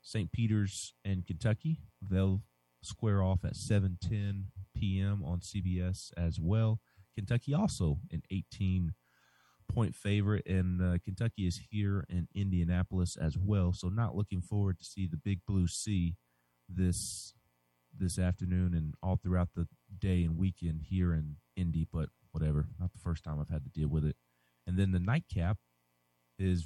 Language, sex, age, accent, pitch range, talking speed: English, male, 40-59, American, 85-100 Hz, 155 wpm